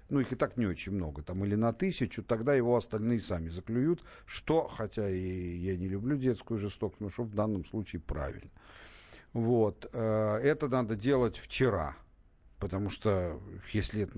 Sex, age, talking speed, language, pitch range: male, 50-69, 160 wpm, Russian, 90-115 Hz